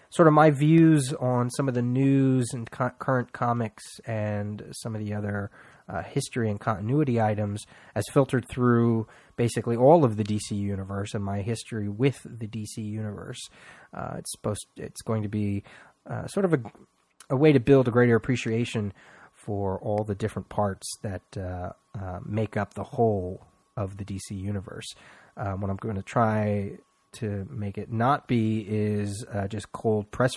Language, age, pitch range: English, 30-49, 100-120 Hz